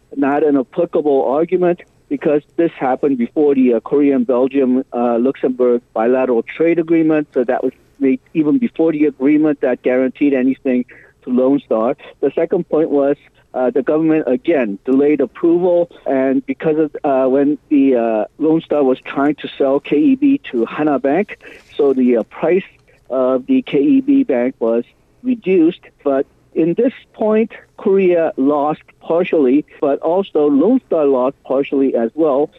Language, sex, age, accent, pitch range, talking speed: English, male, 50-69, American, 130-165 Hz, 150 wpm